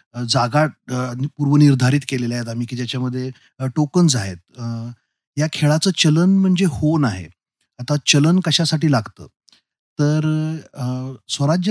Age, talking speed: 30-49, 95 wpm